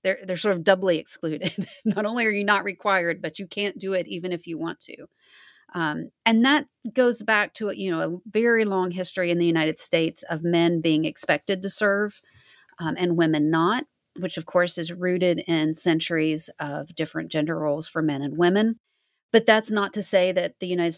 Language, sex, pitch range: English, female, 165-195 Hz